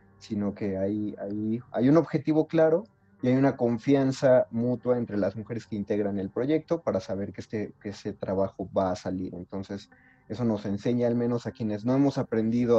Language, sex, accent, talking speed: Spanish, male, Mexican, 190 wpm